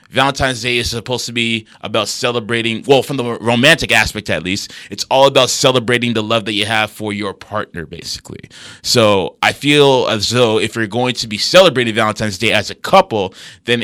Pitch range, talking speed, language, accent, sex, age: 110-135 Hz, 195 wpm, English, American, male, 20-39